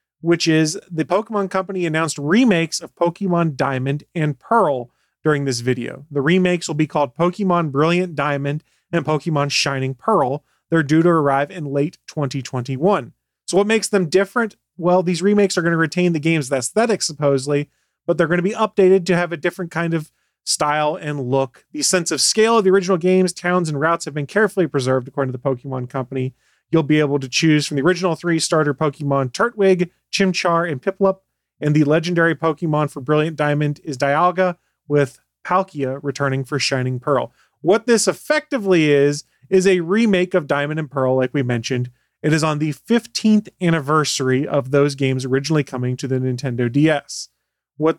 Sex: male